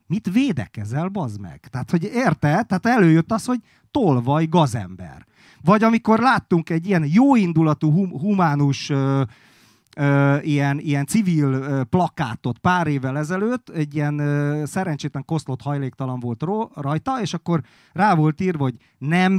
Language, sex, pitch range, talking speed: Hungarian, male, 140-185 Hz, 140 wpm